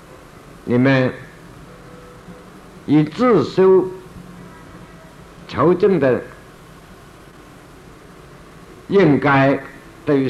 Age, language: 60-79, Chinese